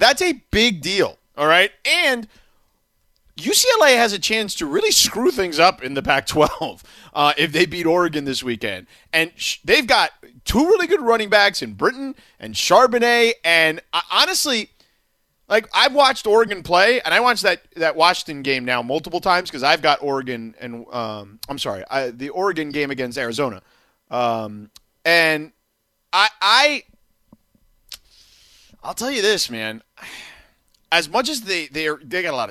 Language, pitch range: English, 140-235 Hz